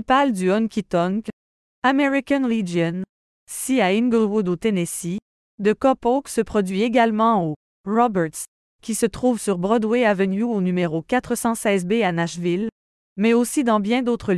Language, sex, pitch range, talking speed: French, female, 190-240 Hz, 140 wpm